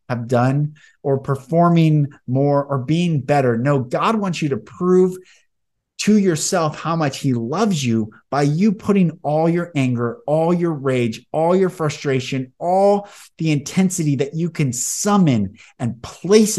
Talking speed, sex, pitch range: 150 wpm, male, 130-180 Hz